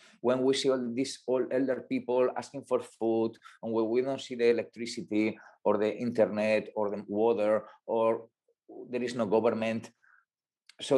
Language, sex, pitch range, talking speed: English, male, 115-160 Hz, 160 wpm